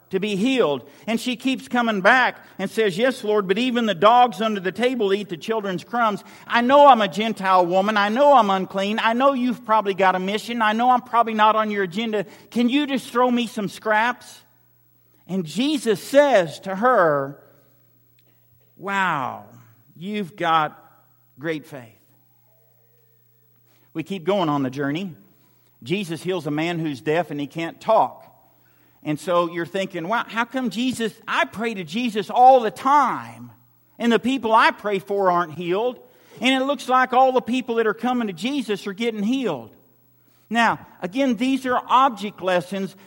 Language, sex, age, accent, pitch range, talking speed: English, male, 50-69, American, 170-240 Hz, 175 wpm